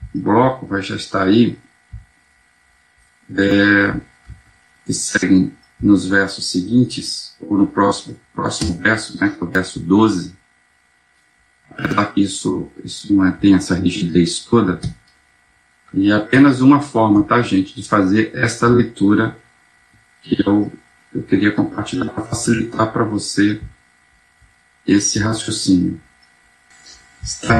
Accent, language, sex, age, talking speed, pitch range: Brazilian, Portuguese, male, 50-69, 120 wpm, 80-120 Hz